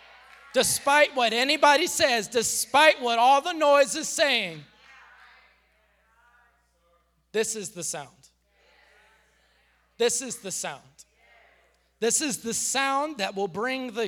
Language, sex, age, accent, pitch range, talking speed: English, male, 20-39, American, 190-270 Hz, 115 wpm